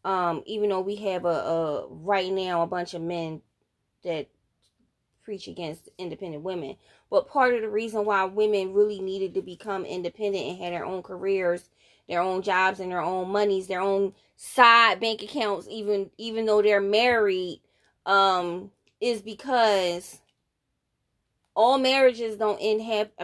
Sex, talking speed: female, 155 wpm